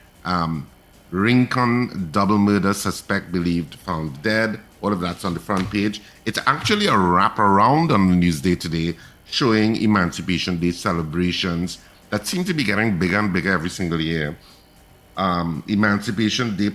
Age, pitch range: 50-69, 85-105 Hz